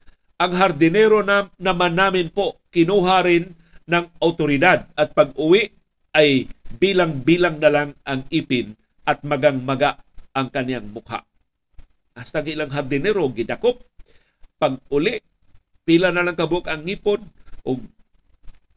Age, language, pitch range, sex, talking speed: 50-69, Filipino, 120-175 Hz, male, 115 wpm